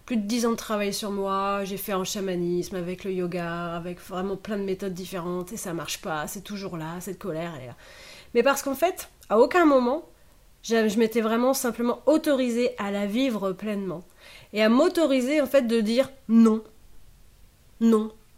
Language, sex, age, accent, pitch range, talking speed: French, female, 30-49, French, 205-265 Hz, 190 wpm